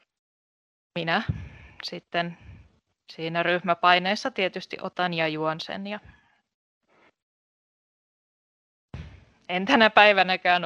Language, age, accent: Finnish, 20-39, native